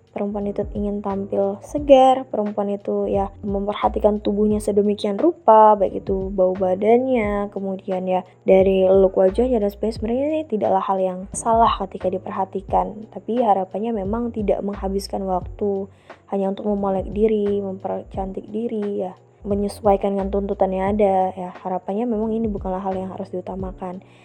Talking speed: 140 wpm